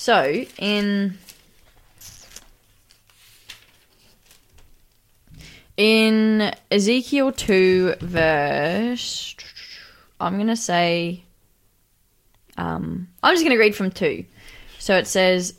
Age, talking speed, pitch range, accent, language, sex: 20-39, 80 wpm, 155-200 Hz, Australian, English, female